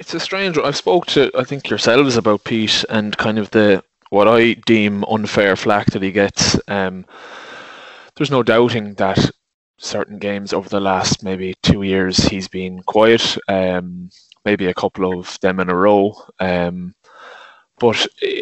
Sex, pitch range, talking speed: male, 95-110 Hz, 165 wpm